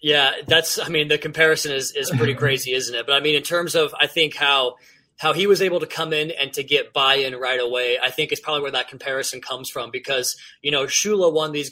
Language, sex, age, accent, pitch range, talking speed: English, male, 20-39, American, 135-195 Hz, 255 wpm